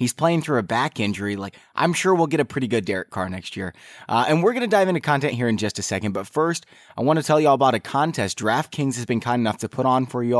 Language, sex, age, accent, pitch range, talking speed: English, male, 20-39, American, 110-155 Hz, 300 wpm